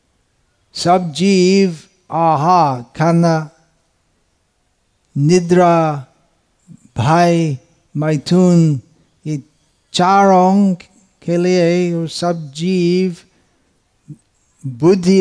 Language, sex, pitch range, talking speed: Hindi, male, 145-175 Hz, 55 wpm